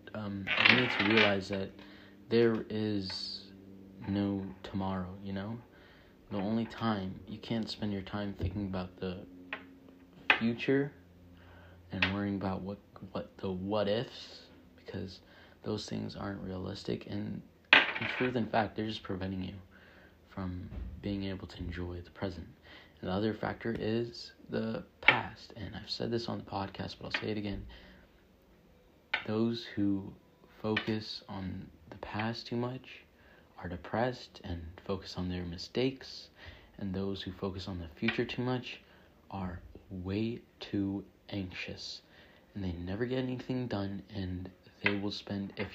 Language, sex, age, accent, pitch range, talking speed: English, male, 30-49, American, 95-110 Hz, 145 wpm